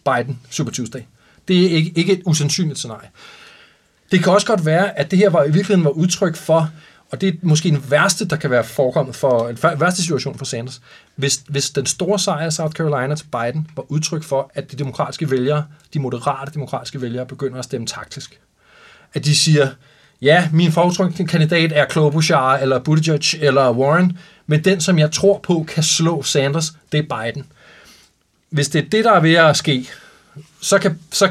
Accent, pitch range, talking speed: Danish, 135-165 Hz, 195 wpm